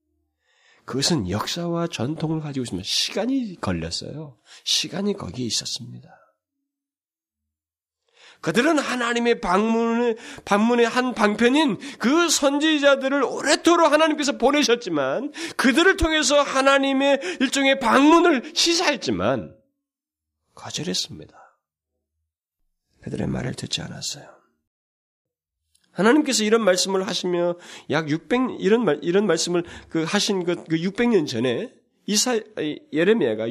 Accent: native